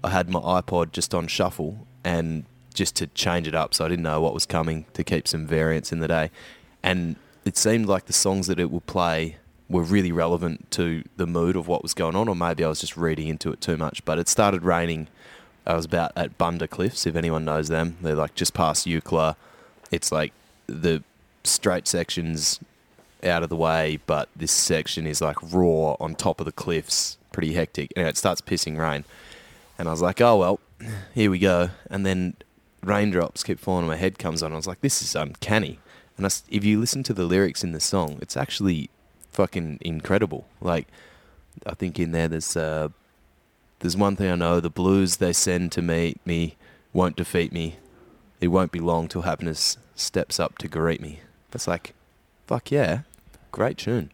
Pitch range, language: 80-95 Hz, English